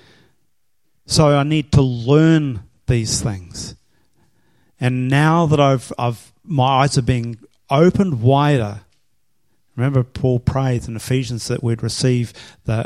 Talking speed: 125 wpm